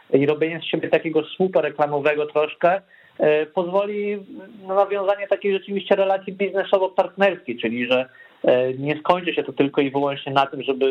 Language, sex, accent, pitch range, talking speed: Polish, male, native, 130-155 Hz, 170 wpm